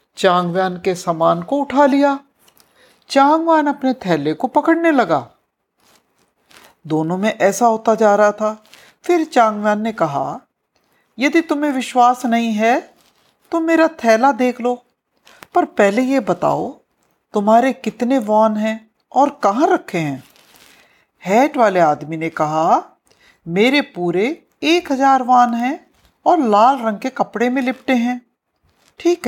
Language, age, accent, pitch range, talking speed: Hindi, 50-69, native, 190-275 Hz, 135 wpm